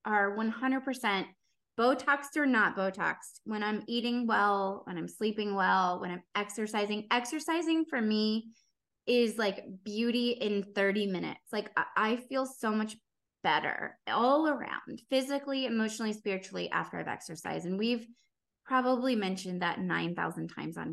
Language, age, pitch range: English, 20-39, 185-230 Hz